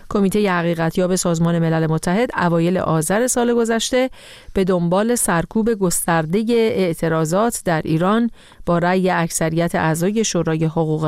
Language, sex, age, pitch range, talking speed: Persian, female, 40-59, 165-210 Hz, 120 wpm